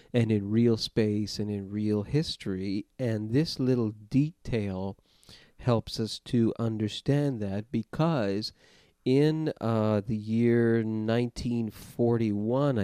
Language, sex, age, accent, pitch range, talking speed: English, male, 40-59, American, 100-120 Hz, 110 wpm